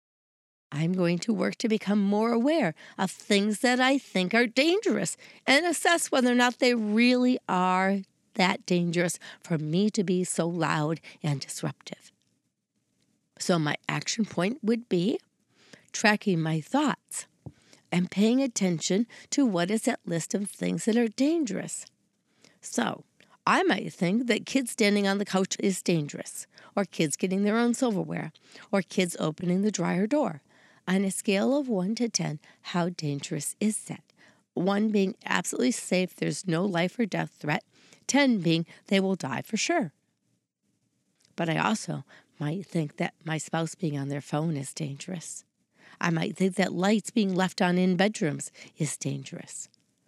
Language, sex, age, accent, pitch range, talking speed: English, female, 40-59, American, 170-220 Hz, 160 wpm